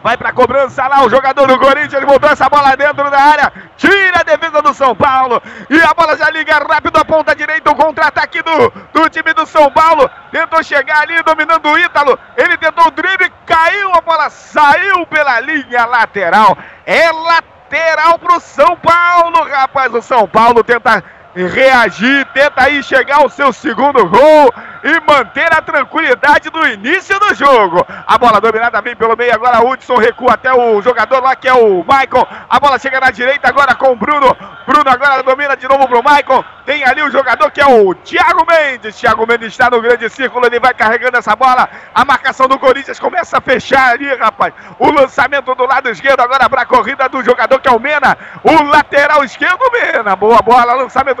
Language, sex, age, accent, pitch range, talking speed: Portuguese, male, 40-59, Brazilian, 255-320 Hz, 195 wpm